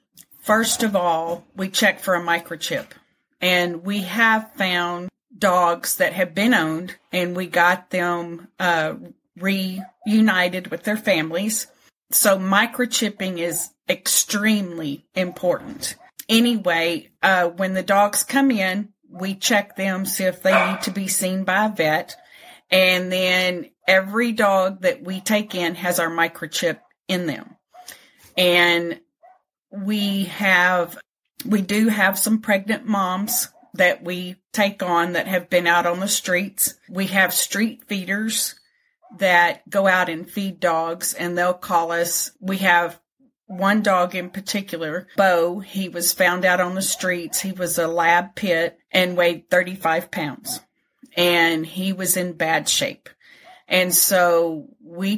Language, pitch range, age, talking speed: English, 175-210 Hz, 40-59, 140 wpm